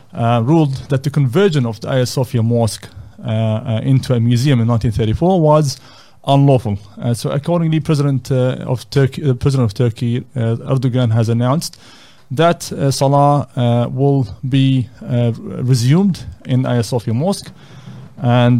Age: 30-49